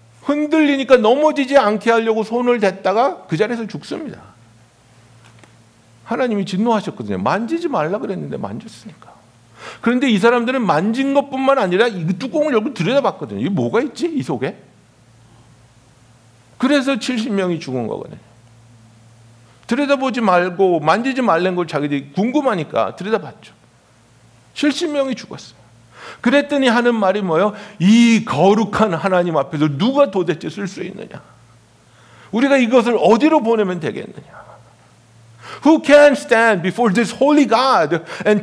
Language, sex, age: Korean, male, 60-79